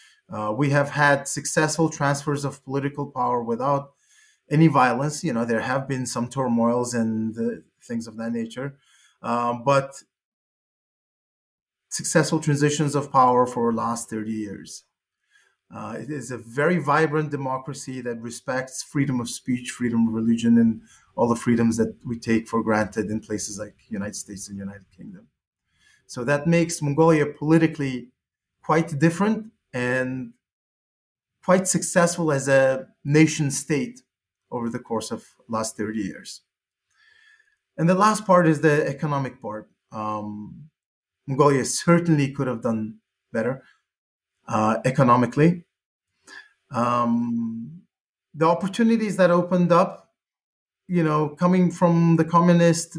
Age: 30-49